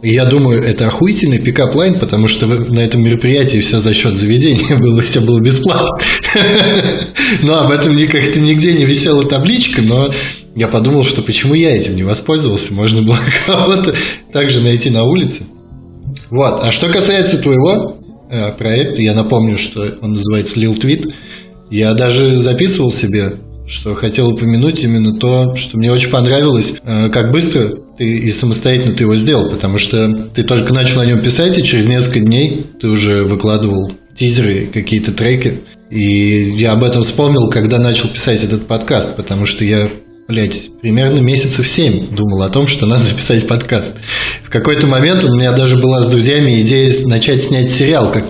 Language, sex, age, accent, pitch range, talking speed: Russian, male, 20-39, native, 110-140 Hz, 165 wpm